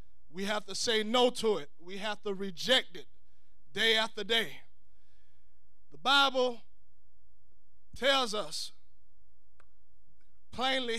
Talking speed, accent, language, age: 110 wpm, American, English, 20-39